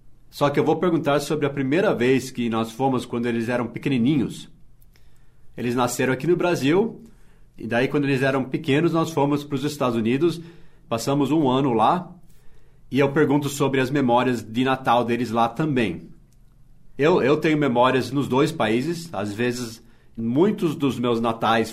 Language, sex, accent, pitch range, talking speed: Portuguese, male, Brazilian, 120-145 Hz, 170 wpm